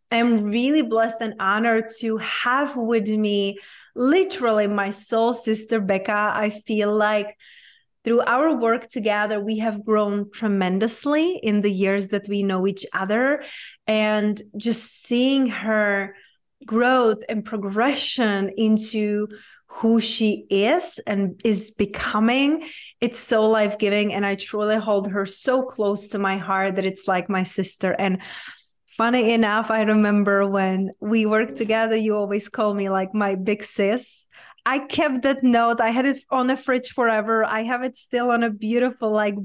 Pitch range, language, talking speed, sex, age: 205-230 Hz, English, 155 wpm, female, 30-49